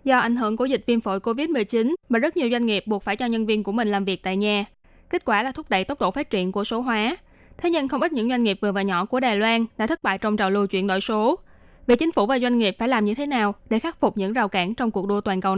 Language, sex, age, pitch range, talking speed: Vietnamese, female, 20-39, 205-250 Hz, 310 wpm